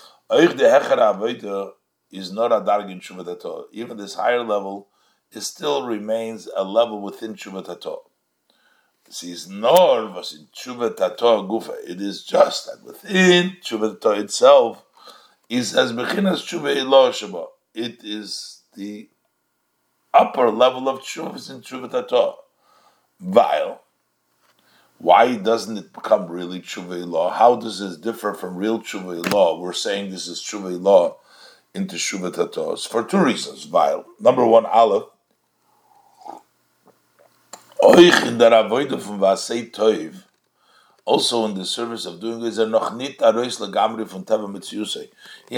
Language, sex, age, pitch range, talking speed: English, male, 60-79, 100-140 Hz, 110 wpm